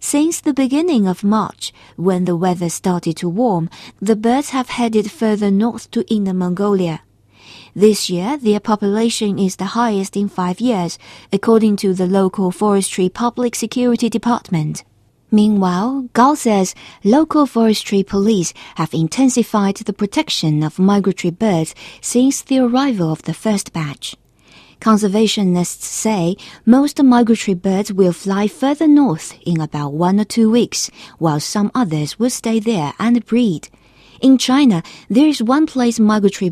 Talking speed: 145 wpm